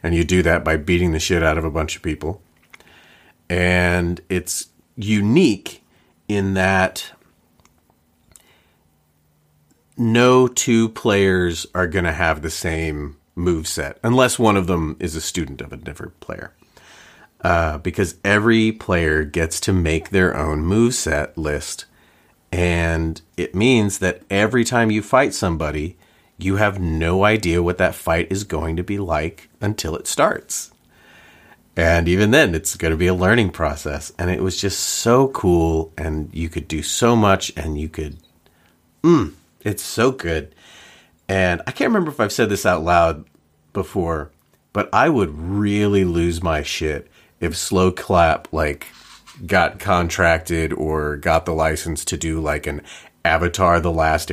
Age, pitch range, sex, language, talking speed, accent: 40-59, 80-95 Hz, male, English, 155 wpm, American